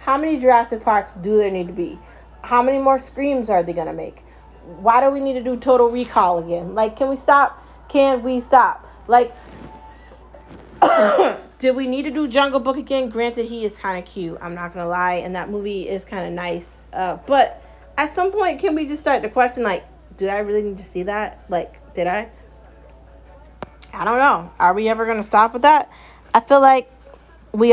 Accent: American